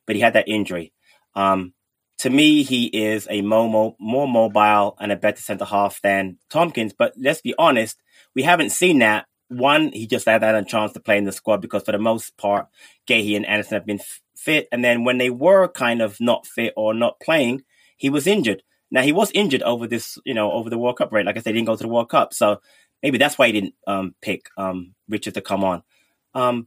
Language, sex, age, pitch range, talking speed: English, male, 20-39, 105-140 Hz, 235 wpm